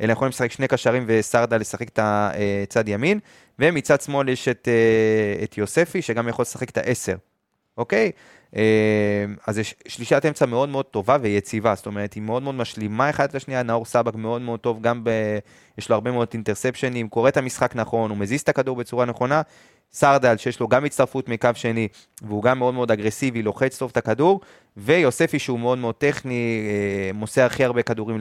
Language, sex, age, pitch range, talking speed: Hebrew, male, 20-39, 110-130 Hz, 180 wpm